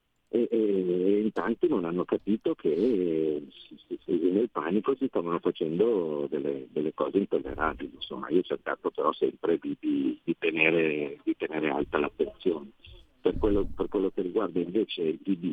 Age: 50-69